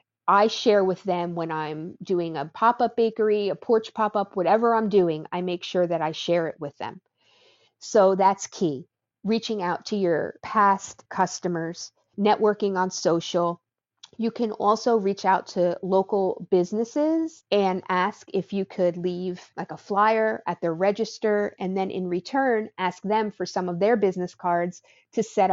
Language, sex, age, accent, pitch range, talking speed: English, female, 50-69, American, 180-220 Hz, 165 wpm